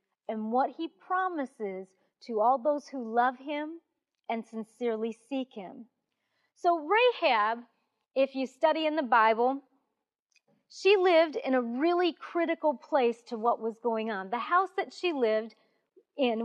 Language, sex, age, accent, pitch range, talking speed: English, female, 40-59, American, 245-320 Hz, 145 wpm